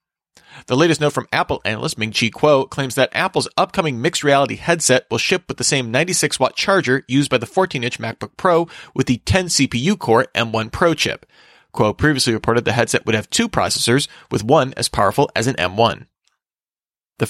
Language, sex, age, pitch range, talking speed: English, male, 30-49, 115-150 Hz, 175 wpm